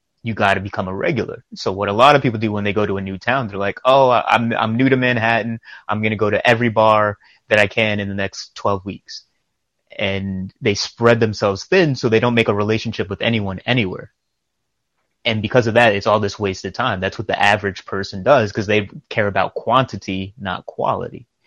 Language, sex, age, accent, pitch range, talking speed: English, male, 30-49, American, 100-115 Hz, 220 wpm